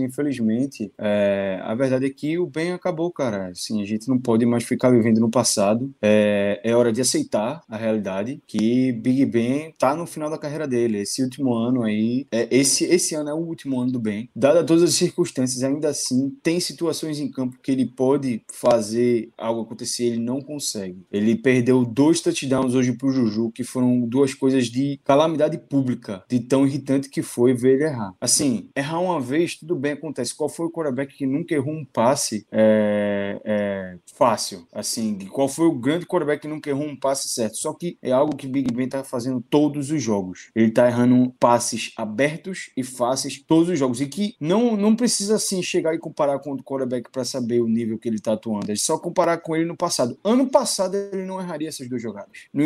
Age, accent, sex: 20-39, Brazilian, male